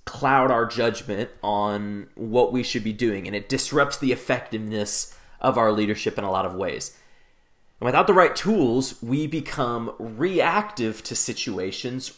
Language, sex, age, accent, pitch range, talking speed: English, male, 30-49, American, 110-135 Hz, 160 wpm